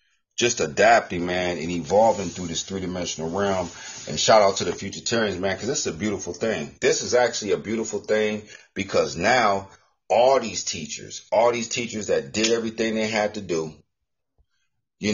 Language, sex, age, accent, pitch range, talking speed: English, male, 40-59, American, 90-115 Hz, 180 wpm